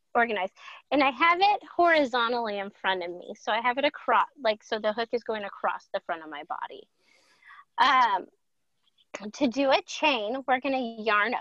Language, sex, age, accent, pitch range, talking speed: English, female, 30-49, American, 210-285 Hz, 190 wpm